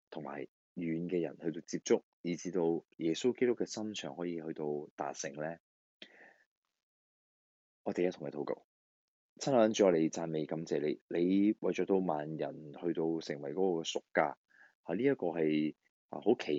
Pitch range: 80-105 Hz